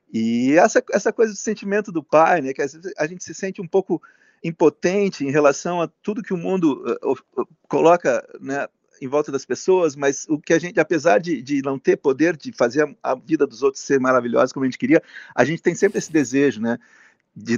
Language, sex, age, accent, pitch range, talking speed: Portuguese, male, 50-69, Brazilian, 135-190 Hz, 225 wpm